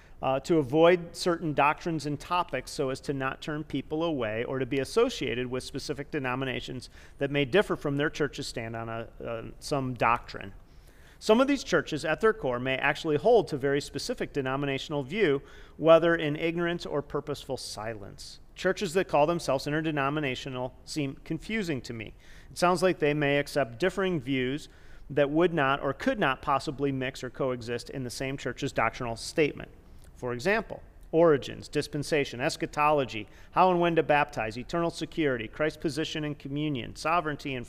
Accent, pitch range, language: American, 130-160 Hz, English